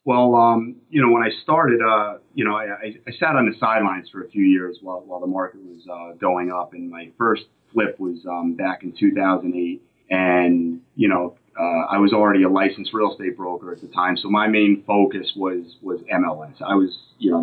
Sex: male